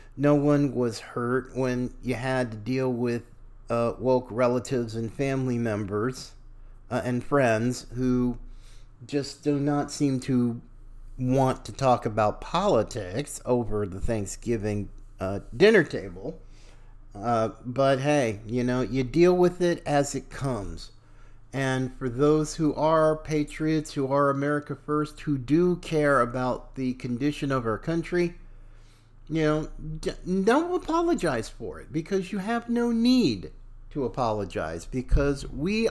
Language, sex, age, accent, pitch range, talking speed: English, male, 40-59, American, 115-180 Hz, 135 wpm